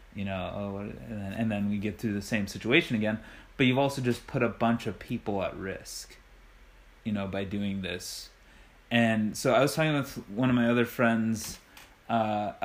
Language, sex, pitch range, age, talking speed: English, male, 100-115 Hz, 20-39, 185 wpm